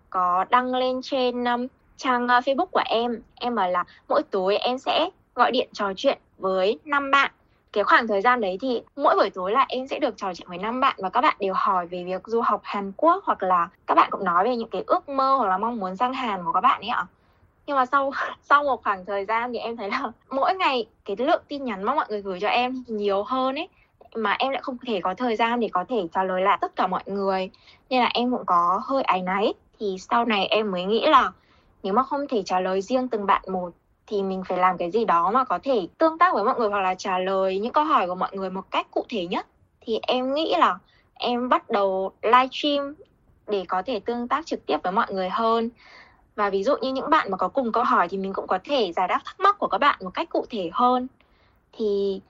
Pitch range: 195-260 Hz